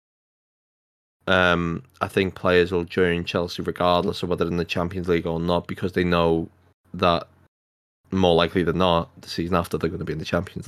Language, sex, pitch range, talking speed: English, male, 85-90 Hz, 195 wpm